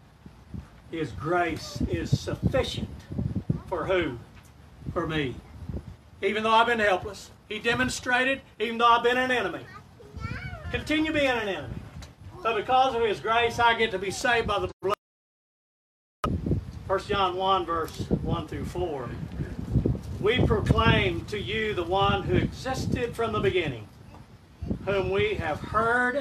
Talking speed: 135 wpm